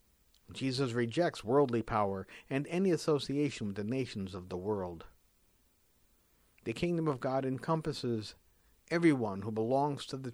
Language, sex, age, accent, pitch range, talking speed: English, male, 50-69, American, 115-155 Hz, 135 wpm